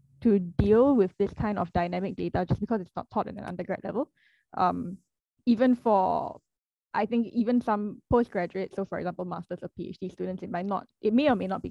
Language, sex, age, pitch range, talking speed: English, female, 10-29, 185-215 Hz, 210 wpm